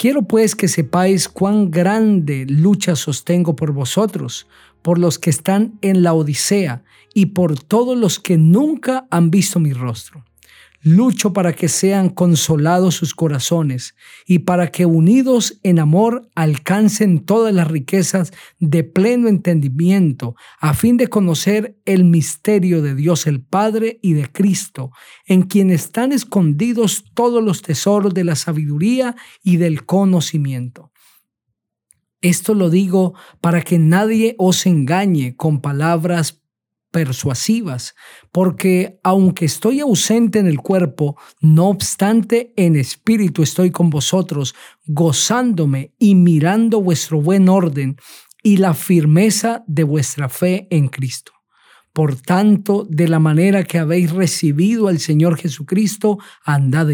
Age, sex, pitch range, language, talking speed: 50-69, male, 155-200 Hz, Spanish, 130 wpm